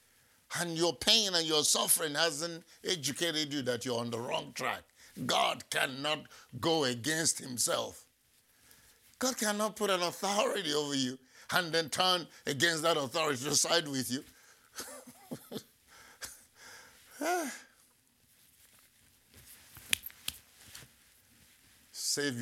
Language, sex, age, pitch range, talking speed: English, male, 60-79, 110-150 Hz, 100 wpm